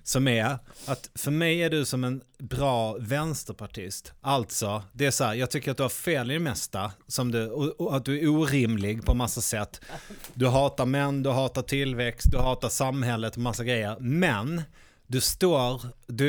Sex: male